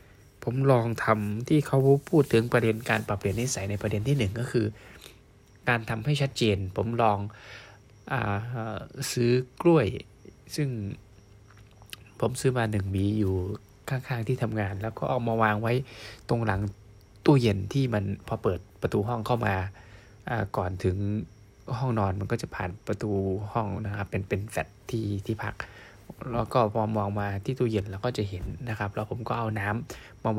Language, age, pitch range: Thai, 20-39, 100-125 Hz